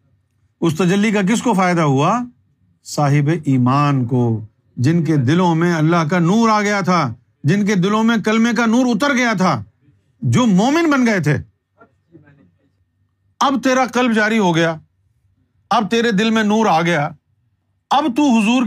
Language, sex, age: Urdu, male, 50-69